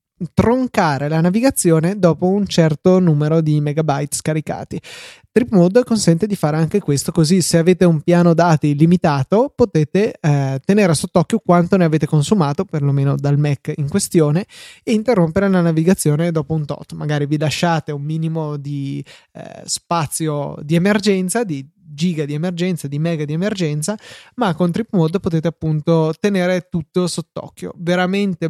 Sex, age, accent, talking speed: male, 20-39, native, 150 wpm